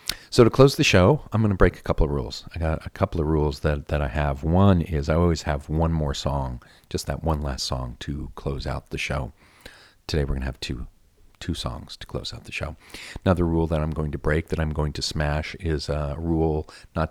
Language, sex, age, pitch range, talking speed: English, male, 40-59, 70-85 Hz, 245 wpm